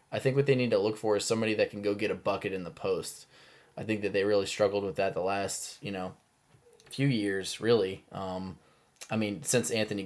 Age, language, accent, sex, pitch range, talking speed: 10-29, English, American, male, 95-115 Hz, 235 wpm